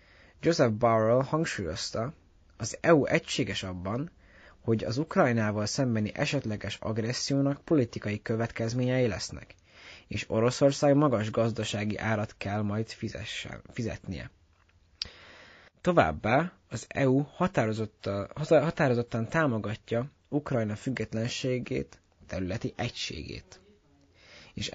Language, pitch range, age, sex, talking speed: Hungarian, 95-125 Hz, 20-39, male, 85 wpm